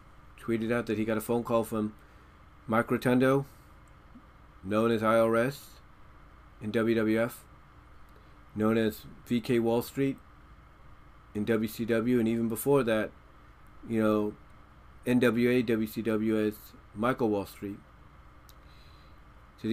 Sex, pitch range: male, 105-120 Hz